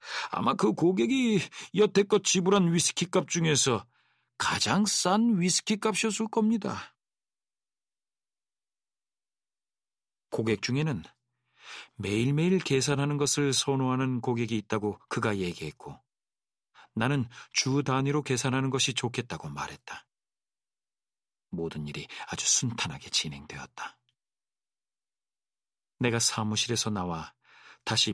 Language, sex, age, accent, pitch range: Korean, male, 40-59, native, 110-145 Hz